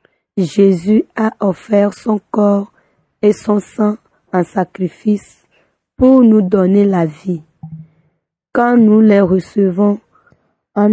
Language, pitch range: French, 195-225 Hz